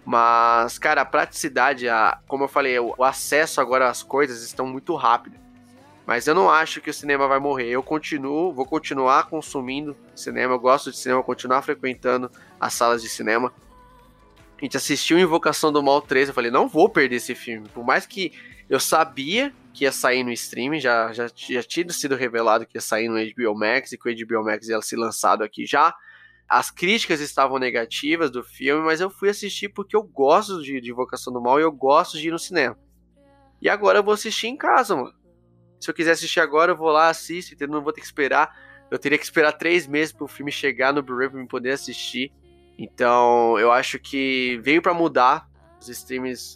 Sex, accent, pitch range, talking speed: male, Brazilian, 120-150 Hz, 205 wpm